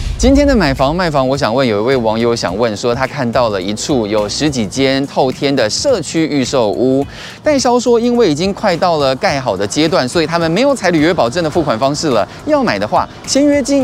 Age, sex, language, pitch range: 20-39, male, Chinese, 125-190 Hz